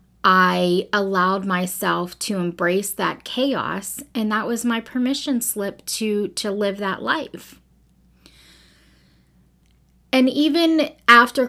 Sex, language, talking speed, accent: female, English, 110 wpm, American